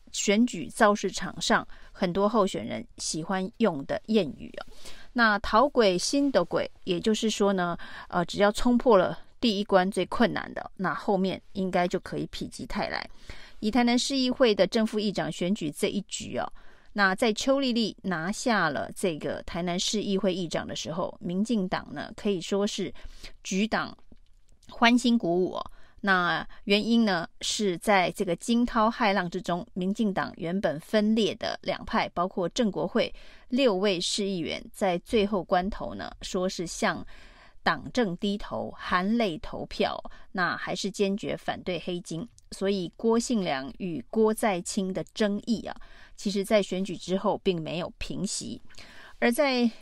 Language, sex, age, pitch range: Chinese, female, 30-49, 185-225 Hz